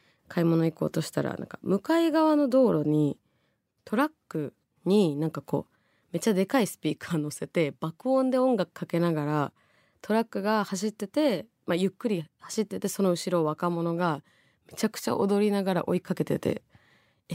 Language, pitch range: Japanese, 155-240 Hz